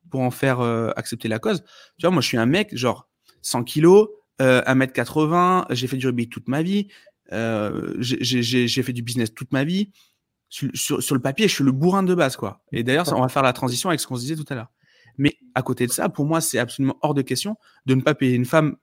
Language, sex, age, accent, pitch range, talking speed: French, male, 30-49, French, 125-160 Hz, 260 wpm